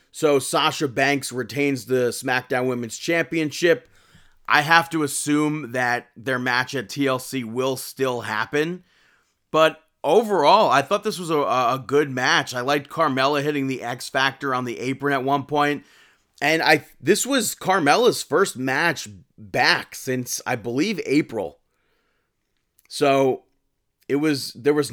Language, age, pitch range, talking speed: English, 30-49, 125-150 Hz, 140 wpm